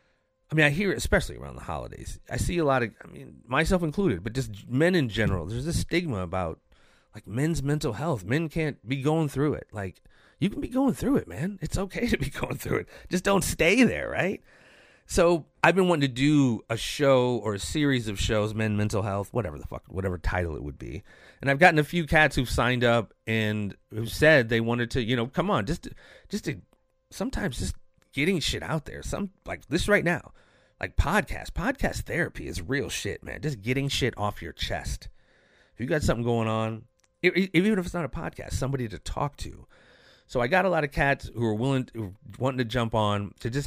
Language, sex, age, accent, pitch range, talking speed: English, male, 30-49, American, 105-145 Hz, 220 wpm